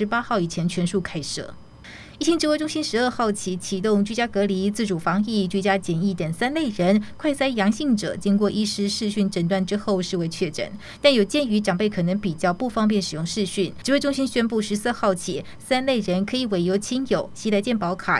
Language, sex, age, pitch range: Chinese, female, 20-39, 190-230 Hz